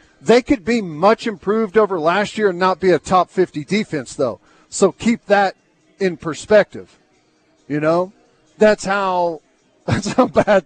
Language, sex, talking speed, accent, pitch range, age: English, male, 160 wpm, American, 160-210 Hz, 40-59